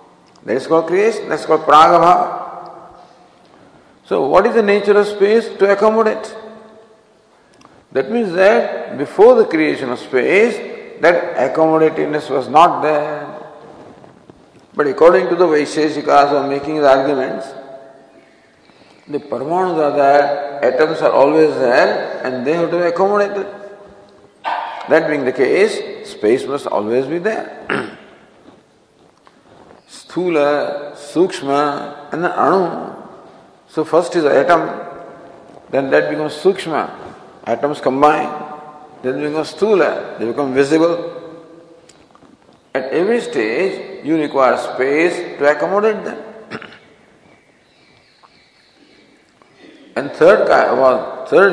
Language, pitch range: English, 135-185 Hz